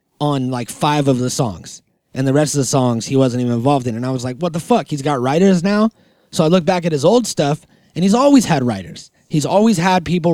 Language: English